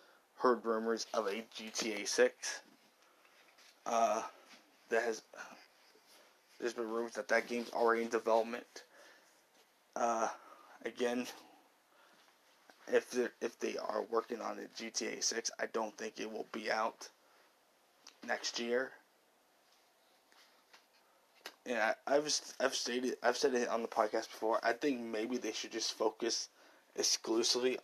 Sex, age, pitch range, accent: male, 20-39, 110-120 Hz, American